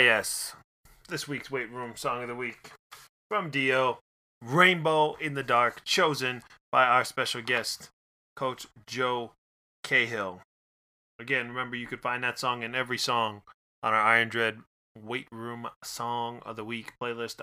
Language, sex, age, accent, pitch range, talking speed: English, male, 20-39, American, 115-140 Hz, 150 wpm